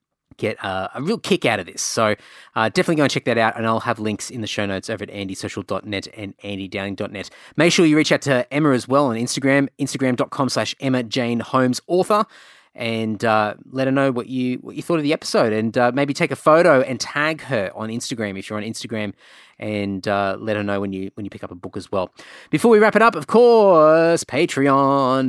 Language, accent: English, Australian